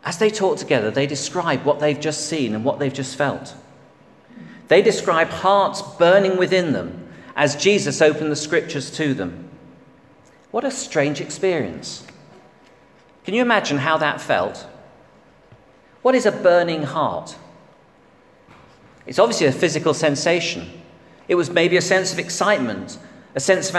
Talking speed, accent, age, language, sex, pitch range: 145 wpm, British, 40-59, English, male, 145-180 Hz